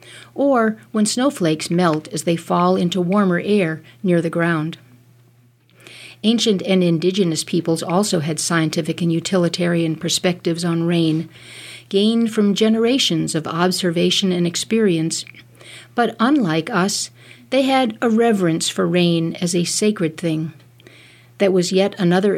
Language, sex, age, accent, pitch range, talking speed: English, female, 50-69, American, 160-200 Hz, 130 wpm